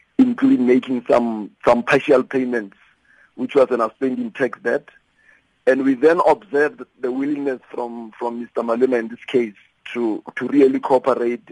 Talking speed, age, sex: 150 wpm, 50-69, male